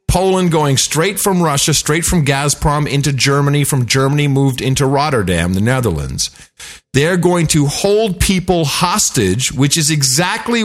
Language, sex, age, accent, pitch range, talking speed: English, male, 50-69, American, 115-165 Hz, 145 wpm